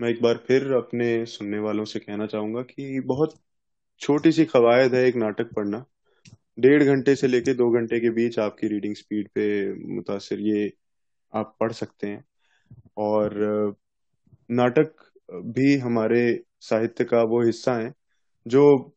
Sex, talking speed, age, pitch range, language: male, 150 wpm, 20-39, 105-125 Hz, Hindi